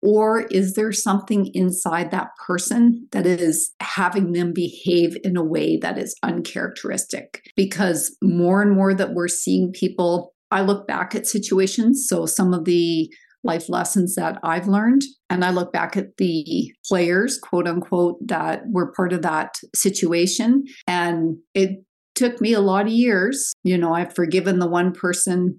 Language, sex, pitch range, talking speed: English, female, 170-205 Hz, 165 wpm